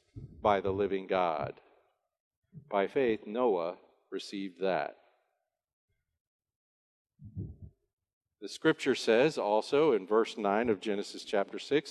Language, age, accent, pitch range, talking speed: English, 50-69, American, 120-190 Hz, 100 wpm